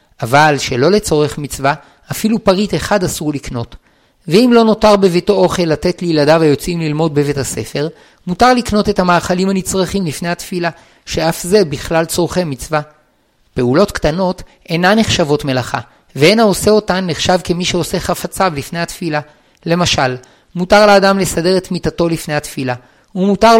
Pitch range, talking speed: 150-190 Hz, 140 wpm